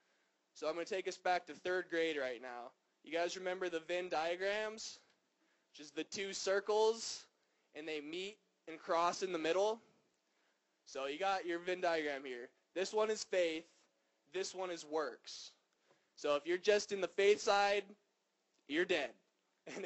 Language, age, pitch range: English, 20-39, 150-195 Hz